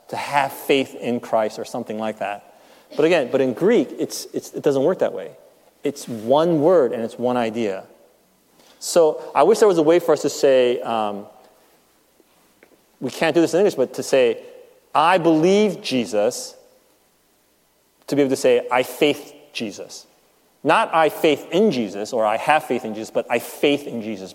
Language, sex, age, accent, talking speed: English, male, 30-49, American, 185 wpm